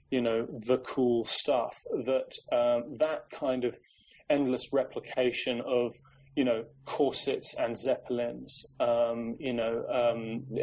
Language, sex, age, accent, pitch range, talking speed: English, male, 20-39, British, 120-135 Hz, 125 wpm